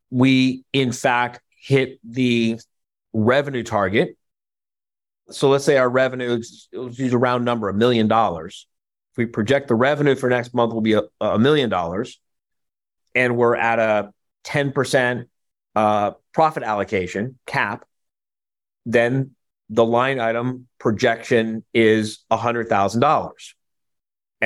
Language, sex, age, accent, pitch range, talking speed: English, male, 30-49, American, 115-130 Hz, 120 wpm